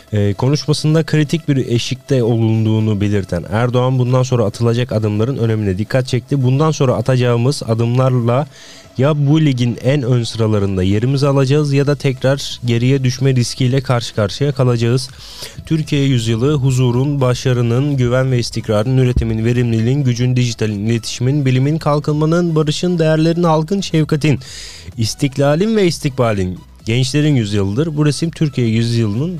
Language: Turkish